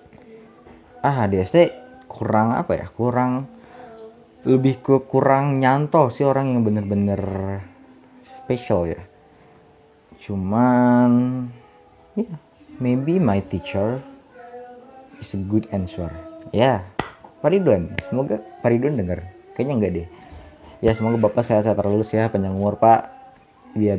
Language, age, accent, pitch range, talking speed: Indonesian, 20-39, native, 100-150 Hz, 115 wpm